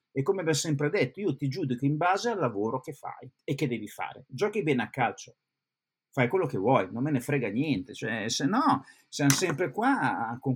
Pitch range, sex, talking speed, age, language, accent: 125-155 Hz, male, 215 wpm, 50-69, Italian, native